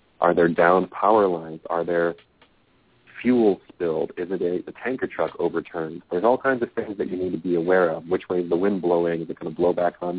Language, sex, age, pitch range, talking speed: English, male, 40-59, 85-95 Hz, 240 wpm